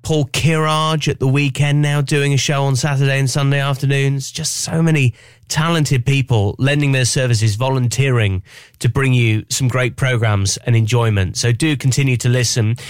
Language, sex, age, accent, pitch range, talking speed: English, male, 30-49, British, 120-150 Hz, 165 wpm